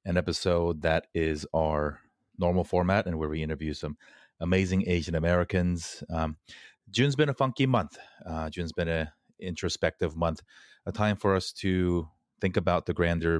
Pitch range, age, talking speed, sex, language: 80-90 Hz, 30-49, 150 wpm, male, English